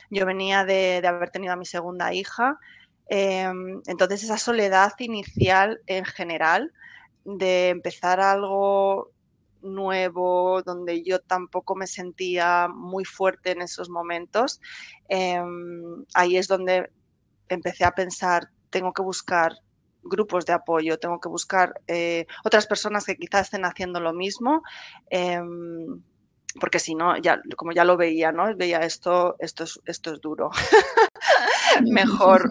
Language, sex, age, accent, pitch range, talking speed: Spanish, female, 20-39, Spanish, 175-195 Hz, 135 wpm